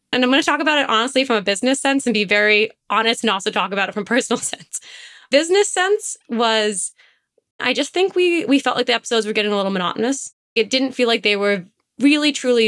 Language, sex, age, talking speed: English, female, 20-39, 230 wpm